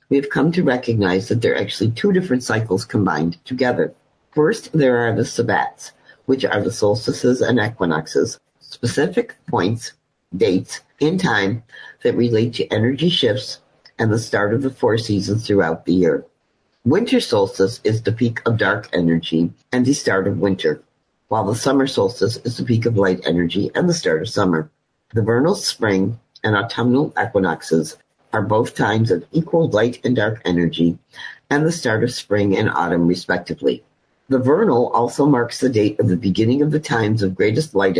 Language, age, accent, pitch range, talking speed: English, 50-69, American, 100-125 Hz, 175 wpm